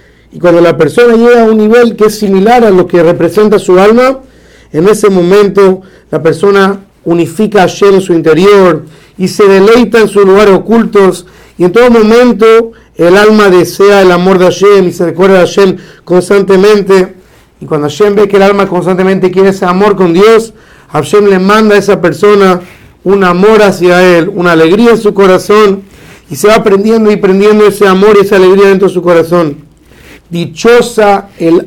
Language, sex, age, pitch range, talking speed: Spanish, male, 50-69, 175-210 Hz, 185 wpm